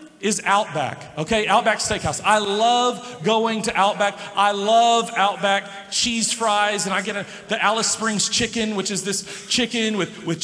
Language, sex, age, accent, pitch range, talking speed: English, male, 40-59, American, 195-235 Hz, 160 wpm